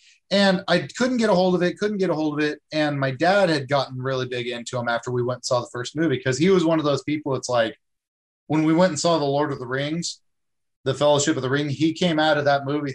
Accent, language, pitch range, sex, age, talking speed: American, English, 130-170 Hz, male, 30-49, 285 wpm